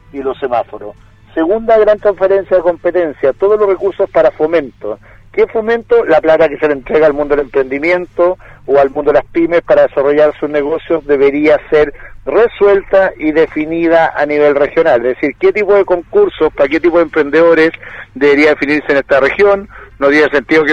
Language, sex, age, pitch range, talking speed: Spanish, male, 50-69, 140-165 Hz, 180 wpm